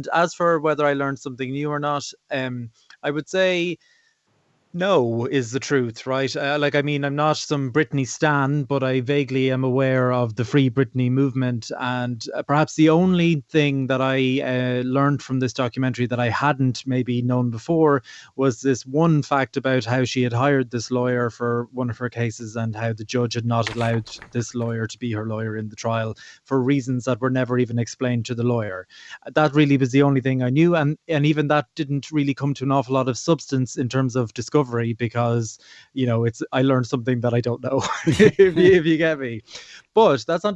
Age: 20-39